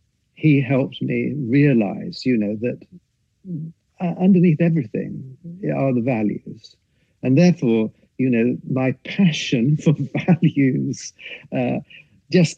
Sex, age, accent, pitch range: male, 60-79, British, 110-140 Hz